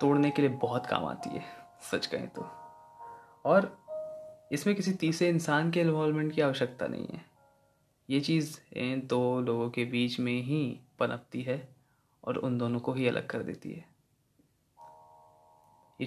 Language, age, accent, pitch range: Hindi, 20-39, native, 125-155 Hz